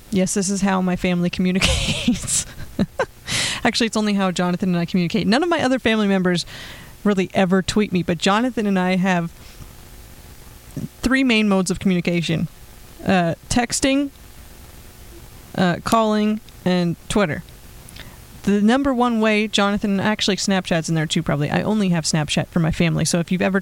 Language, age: English, 20-39